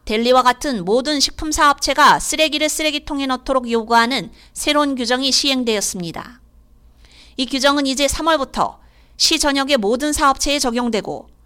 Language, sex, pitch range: Korean, female, 220-285 Hz